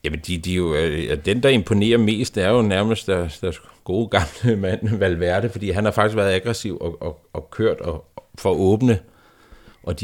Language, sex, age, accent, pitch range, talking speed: Danish, male, 60-79, native, 90-115 Hz, 185 wpm